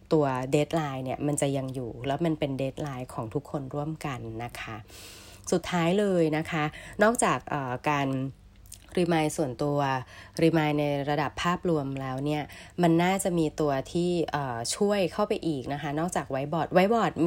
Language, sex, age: Thai, female, 20-39